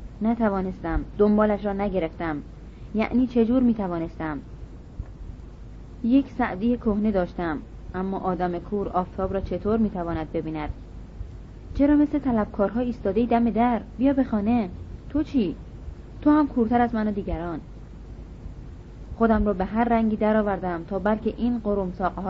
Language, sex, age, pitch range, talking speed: Persian, female, 30-49, 170-225 Hz, 140 wpm